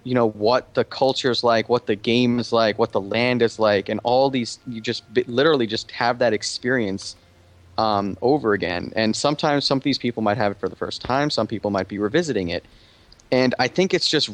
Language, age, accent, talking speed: English, 20-39, American, 225 wpm